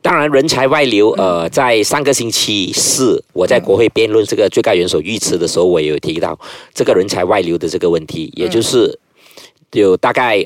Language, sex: Chinese, male